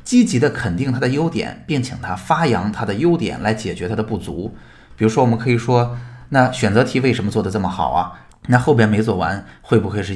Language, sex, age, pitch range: Chinese, male, 20-39, 95-125 Hz